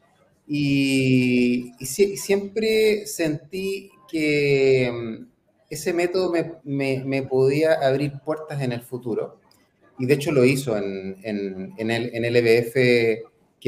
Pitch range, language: 130-160 Hz, Spanish